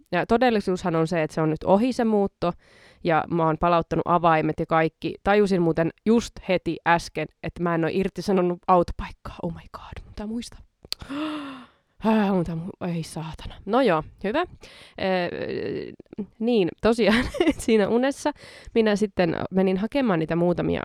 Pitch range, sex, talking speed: 175-235 Hz, female, 150 wpm